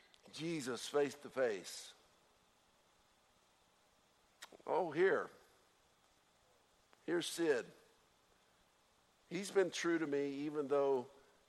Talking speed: 80 wpm